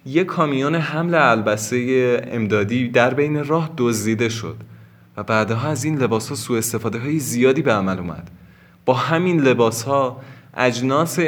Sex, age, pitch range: male, 20-39, 100-140 Hz